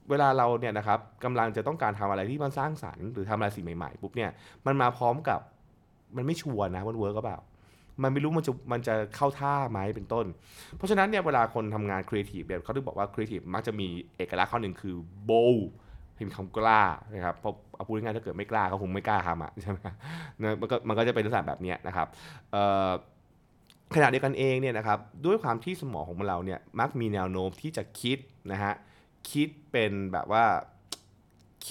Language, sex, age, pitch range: Thai, male, 20-39, 100-140 Hz